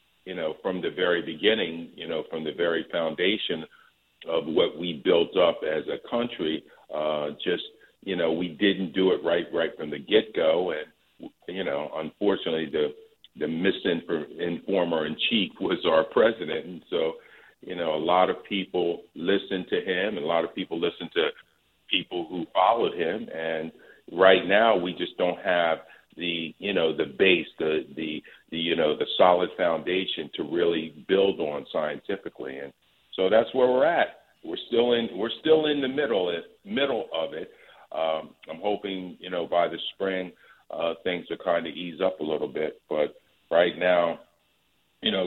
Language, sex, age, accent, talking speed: English, male, 50-69, American, 175 wpm